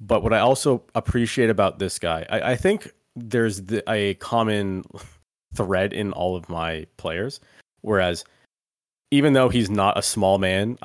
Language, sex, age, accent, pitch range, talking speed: English, male, 30-49, American, 95-120 Hz, 155 wpm